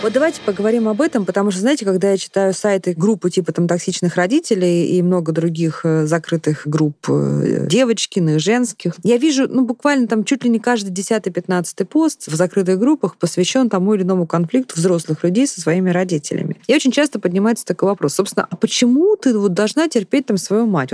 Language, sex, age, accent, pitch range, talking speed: Russian, female, 20-39, native, 180-245 Hz, 185 wpm